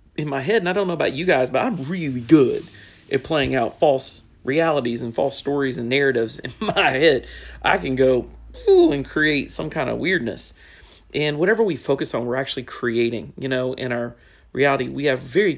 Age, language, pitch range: 40-59, English, 110-140 Hz